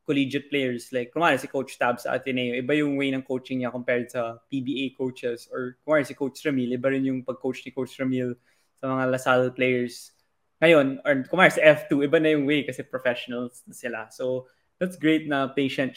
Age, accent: 20-39, native